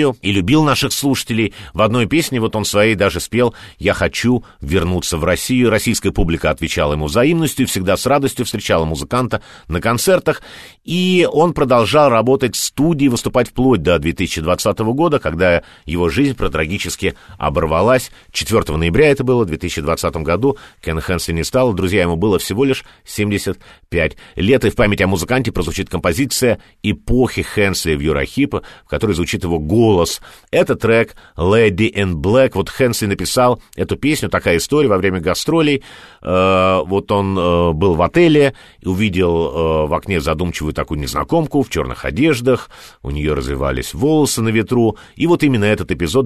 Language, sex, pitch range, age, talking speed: Russian, male, 90-130 Hz, 50-69, 155 wpm